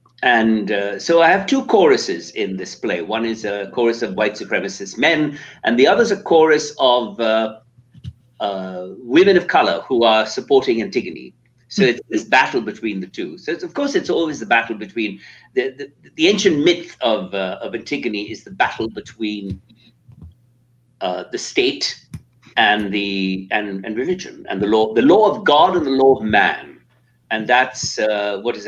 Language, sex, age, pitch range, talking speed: English, male, 60-79, 110-145 Hz, 185 wpm